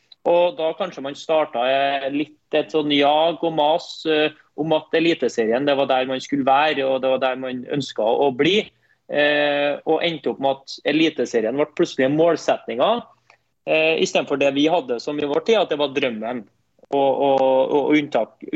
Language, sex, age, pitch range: English, male, 30-49, 140-165 Hz